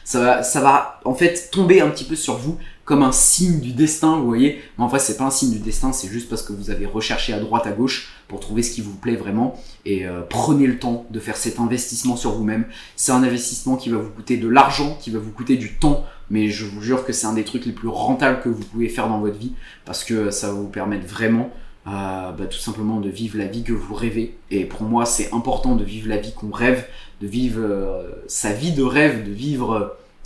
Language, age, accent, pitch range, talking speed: French, 20-39, French, 105-125 Hz, 255 wpm